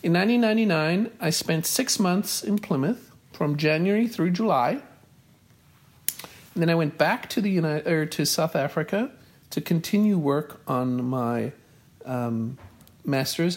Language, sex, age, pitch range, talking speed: English, male, 50-69, 145-190 Hz, 135 wpm